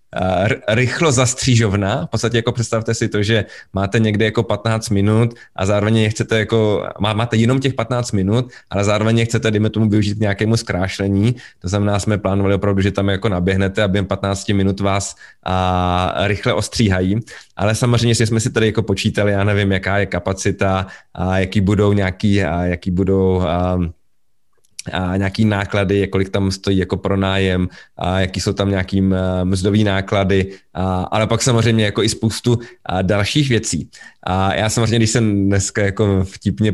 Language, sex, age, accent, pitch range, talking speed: Czech, male, 20-39, native, 95-115 Hz, 170 wpm